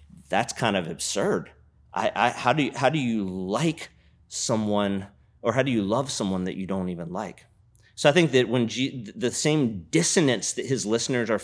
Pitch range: 105-135 Hz